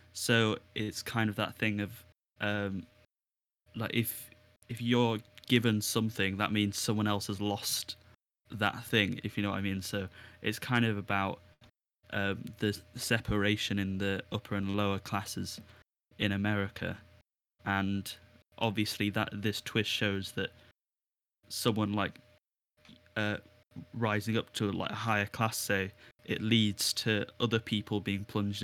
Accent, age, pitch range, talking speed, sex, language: British, 10-29, 100-115 Hz, 145 wpm, male, English